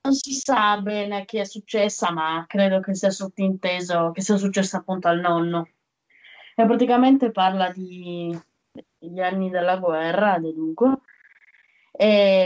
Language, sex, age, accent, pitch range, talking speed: Italian, female, 20-39, native, 180-225 Hz, 140 wpm